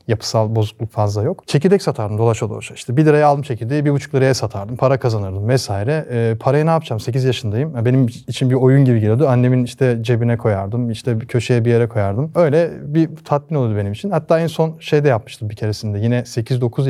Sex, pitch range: male, 115-150 Hz